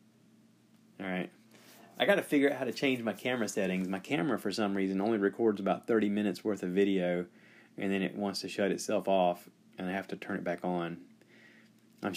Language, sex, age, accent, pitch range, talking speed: English, male, 30-49, American, 95-115 Hz, 200 wpm